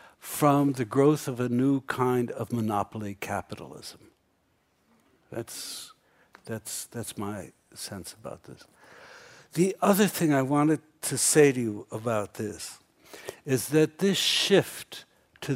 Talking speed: 125 wpm